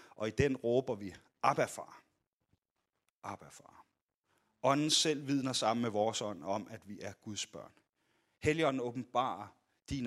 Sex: male